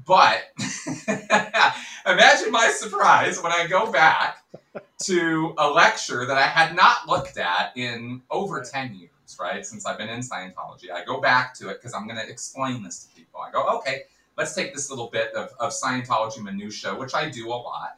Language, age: English, 30-49